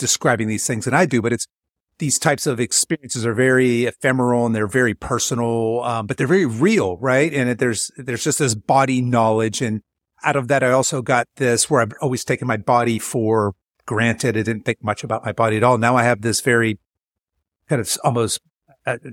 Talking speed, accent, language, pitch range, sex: 205 wpm, American, English, 115-150 Hz, male